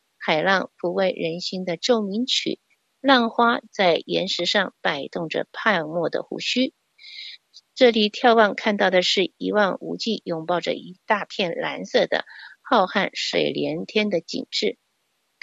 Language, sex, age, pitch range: Chinese, female, 50-69, 190-275 Hz